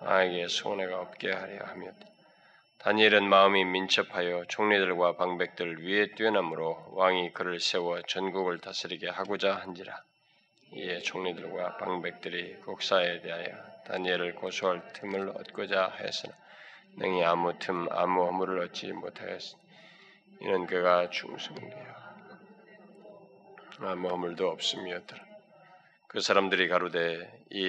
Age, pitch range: 20-39, 85-95 Hz